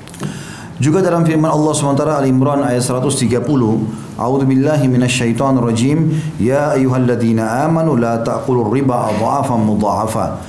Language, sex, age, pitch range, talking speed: Indonesian, male, 30-49, 115-150 Hz, 90 wpm